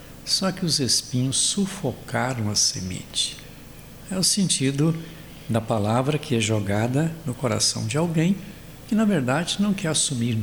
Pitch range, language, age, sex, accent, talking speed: 115-165 Hz, Portuguese, 60-79, male, Brazilian, 145 wpm